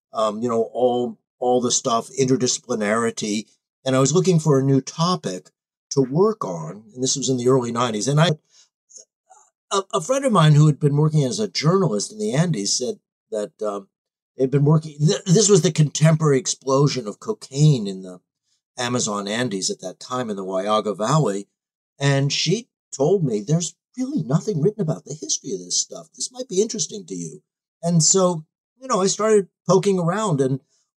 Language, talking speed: English, 190 wpm